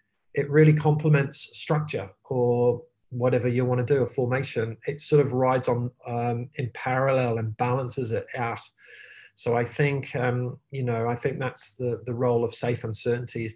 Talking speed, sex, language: 175 wpm, male, English